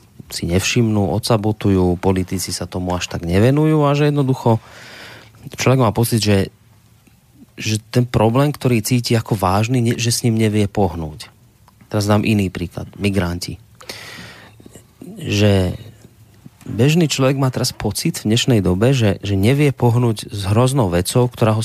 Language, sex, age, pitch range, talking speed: Slovak, male, 30-49, 100-125 Hz, 140 wpm